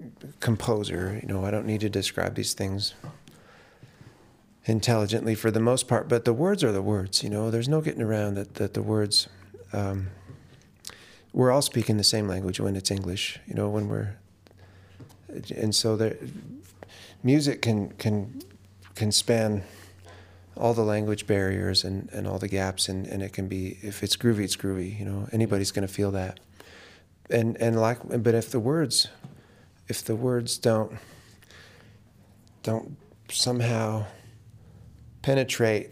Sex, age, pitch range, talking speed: male, 40-59, 100-115 Hz, 155 wpm